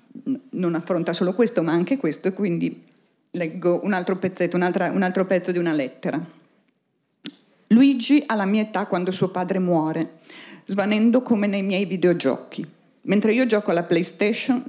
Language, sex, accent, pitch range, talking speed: Italian, female, native, 175-215 Hz, 160 wpm